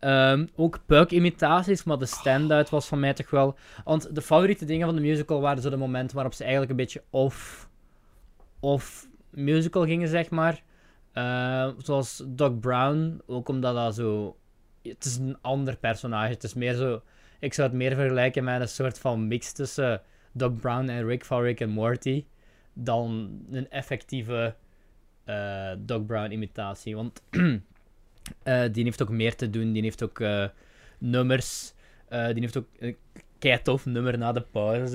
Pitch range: 120-150 Hz